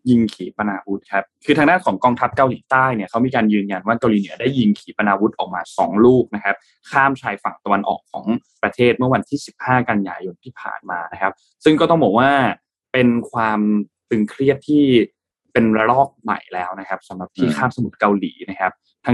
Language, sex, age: Thai, male, 20-39